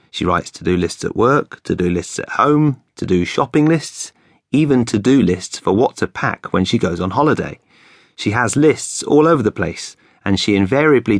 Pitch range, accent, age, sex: 95-120 Hz, British, 30-49, male